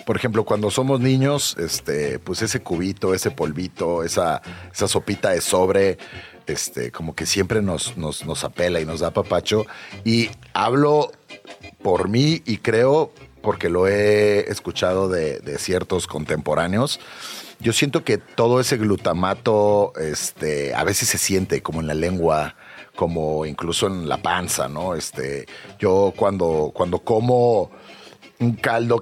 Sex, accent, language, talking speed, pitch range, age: male, Mexican, Spanish, 145 wpm, 85-115 Hz, 40-59